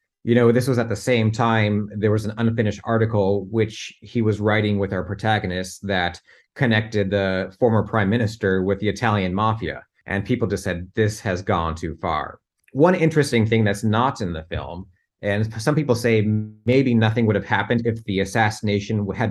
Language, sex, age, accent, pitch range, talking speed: English, male, 30-49, American, 100-120 Hz, 185 wpm